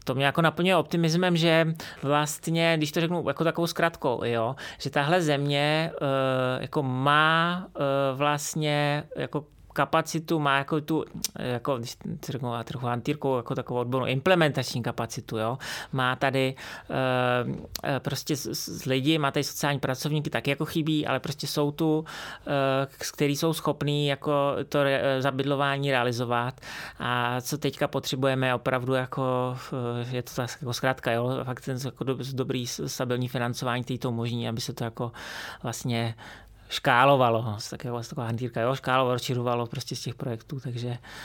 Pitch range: 125-150 Hz